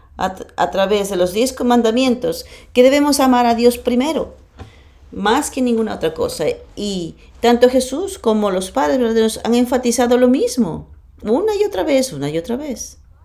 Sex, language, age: female, English, 40-59